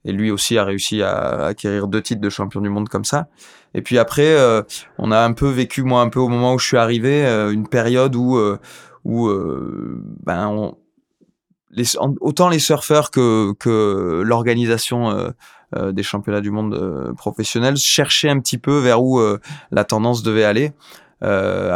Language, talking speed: French, 195 wpm